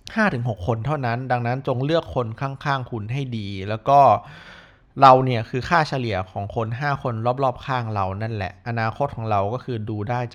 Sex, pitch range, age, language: male, 105-135 Hz, 20-39, Thai